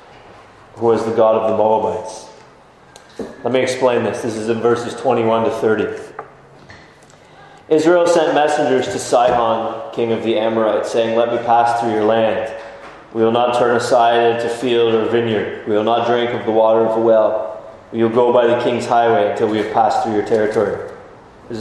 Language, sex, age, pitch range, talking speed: English, male, 20-39, 115-140 Hz, 190 wpm